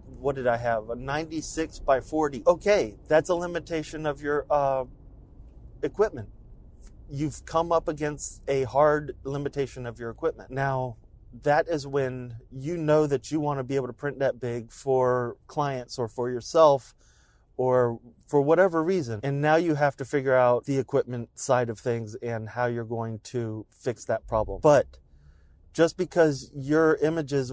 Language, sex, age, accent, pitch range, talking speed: English, male, 30-49, American, 120-150 Hz, 165 wpm